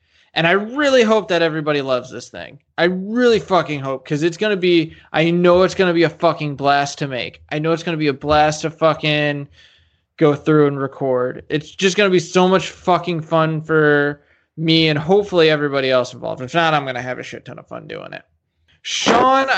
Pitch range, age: 145-195 Hz, 20-39